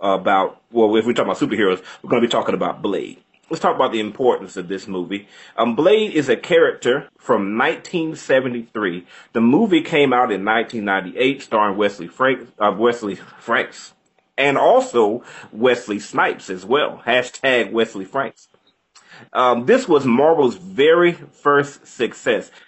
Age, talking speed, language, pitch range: 30-49, 150 wpm, English, 110-140 Hz